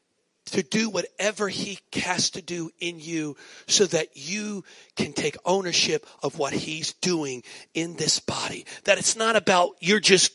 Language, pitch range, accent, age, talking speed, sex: English, 175-225 Hz, American, 40-59, 160 wpm, male